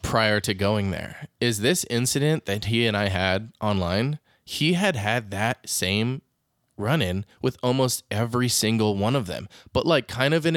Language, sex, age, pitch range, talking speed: English, male, 20-39, 100-130 Hz, 180 wpm